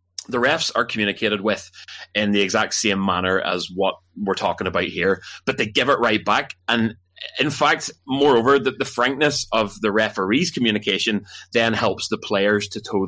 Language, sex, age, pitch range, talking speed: English, male, 20-39, 95-115 Hz, 180 wpm